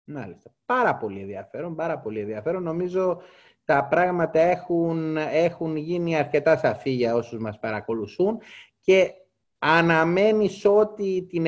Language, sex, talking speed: Greek, male, 115 wpm